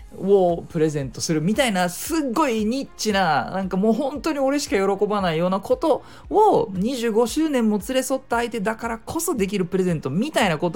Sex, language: male, Japanese